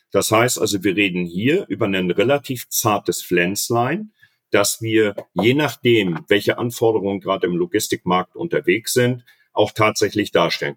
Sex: male